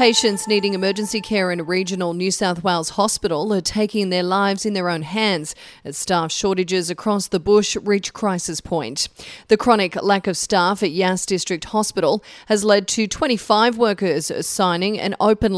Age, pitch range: 30-49, 180-215 Hz